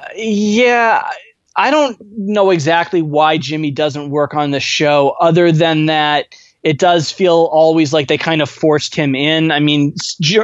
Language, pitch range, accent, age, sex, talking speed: English, 150-185 Hz, American, 20-39, male, 165 wpm